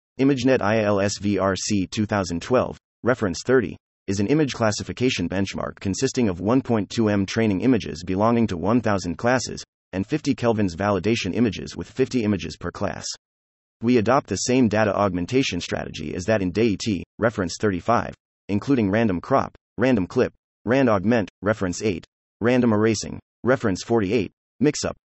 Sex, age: male, 30-49